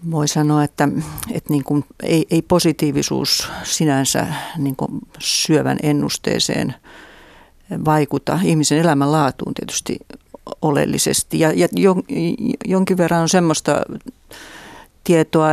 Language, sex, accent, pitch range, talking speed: Finnish, female, native, 150-175 Hz, 110 wpm